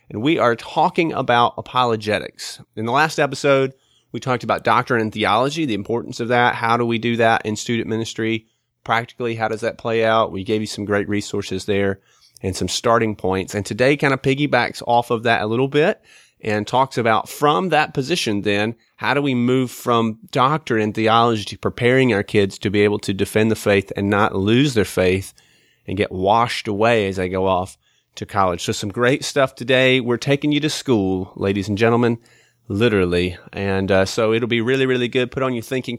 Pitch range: 100-120 Hz